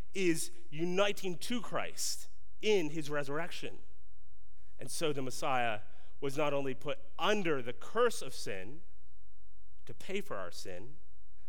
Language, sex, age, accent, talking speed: English, male, 30-49, American, 130 wpm